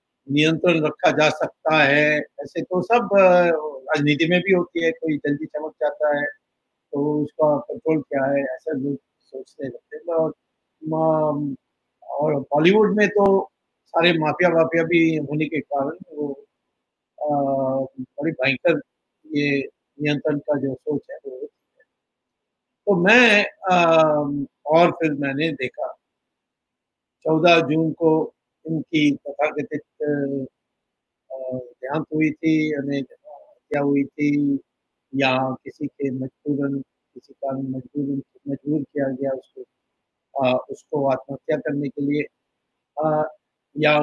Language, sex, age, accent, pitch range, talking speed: Hindi, male, 50-69, native, 140-170 Hz, 110 wpm